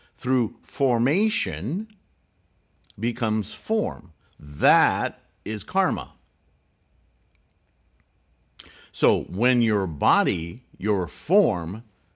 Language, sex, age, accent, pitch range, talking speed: English, male, 50-69, American, 80-120 Hz, 65 wpm